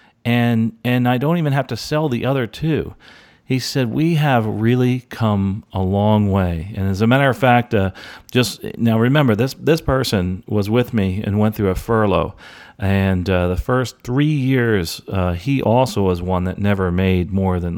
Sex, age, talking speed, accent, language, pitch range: male, 40-59, 190 wpm, American, English, 95-120 Hz